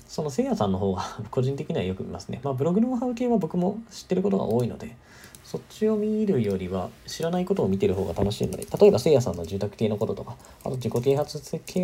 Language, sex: Japanese, male